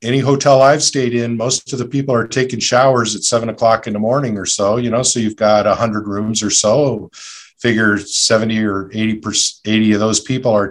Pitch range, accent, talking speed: 100-125 Hz, American, 220 wpm